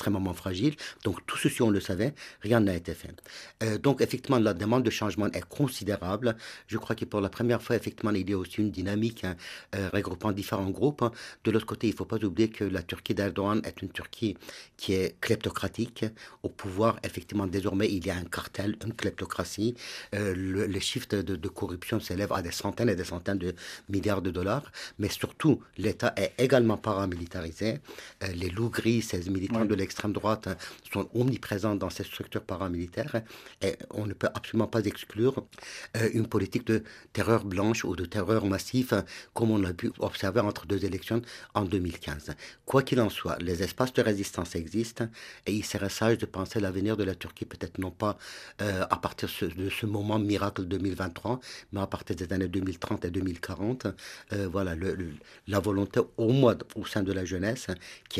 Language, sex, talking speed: French, male, 190 wpm